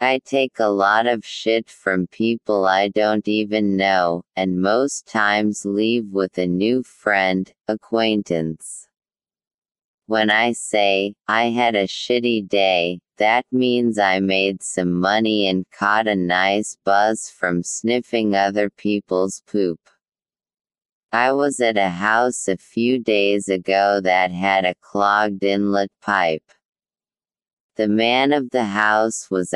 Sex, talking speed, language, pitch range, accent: female, 135 wpm, English, 95-115 Hz, American